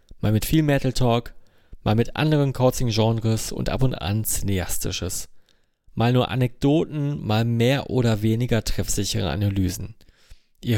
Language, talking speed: German, 130 wpm